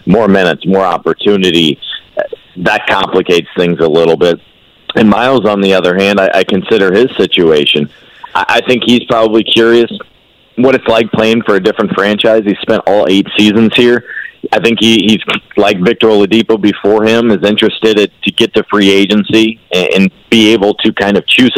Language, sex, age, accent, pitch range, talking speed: English, male, 40-59, American, 100-115 Hz, 185 wpm